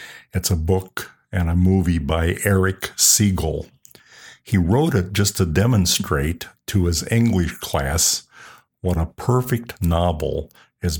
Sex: male